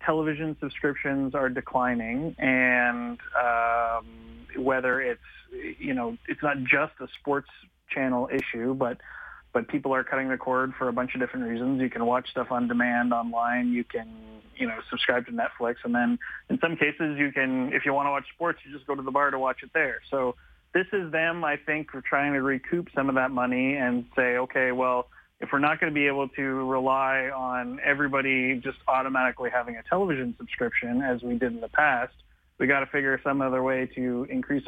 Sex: male